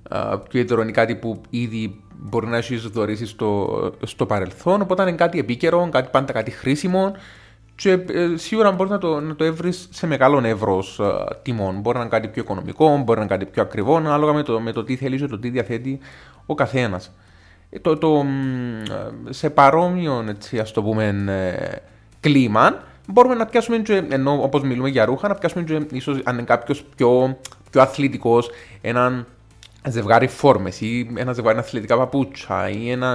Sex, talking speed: male, 150 wpm